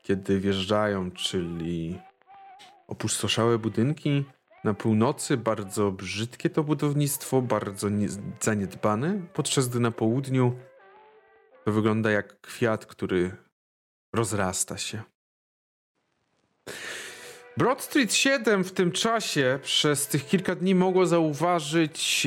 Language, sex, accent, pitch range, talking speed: Polish, male, native, 110-175 Hz, 100 wpm